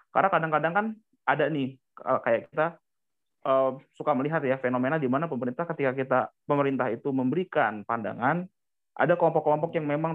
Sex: male